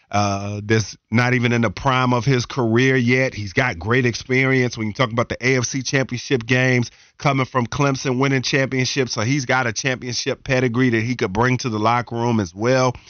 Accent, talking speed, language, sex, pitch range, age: American, 200 wpm, English, male, 110-130 Hz, 40-59